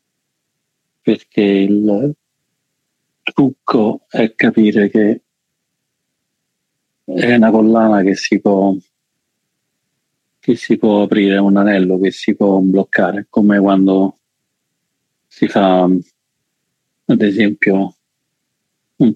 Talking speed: 85 wpm